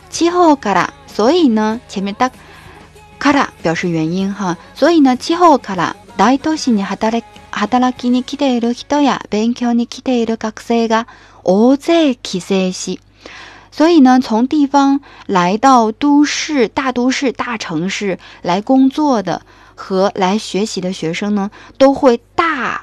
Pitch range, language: 190-260 Hz, Chinese